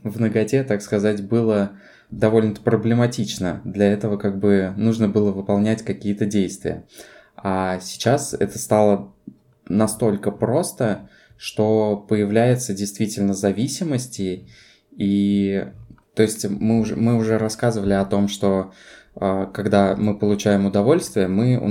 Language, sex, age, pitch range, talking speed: Russian, male, 20-39, 100-110 Hz, 120 wpm